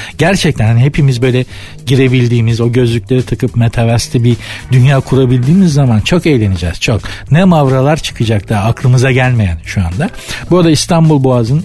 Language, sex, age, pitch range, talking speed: Turkish, male, 60-79, 110-150 Hz, 145 wpm